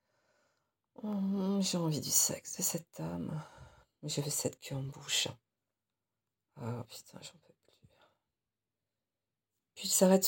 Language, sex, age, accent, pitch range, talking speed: French, female, 50-69, French, 120-165 Hz, 125 wpm